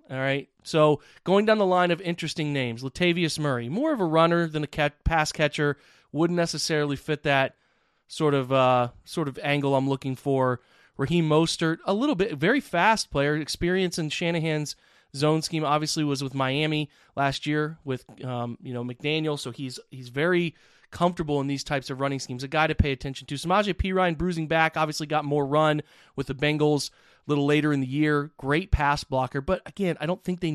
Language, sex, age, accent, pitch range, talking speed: English, male, 30-49, American, 140-165 Hz, 195 wpm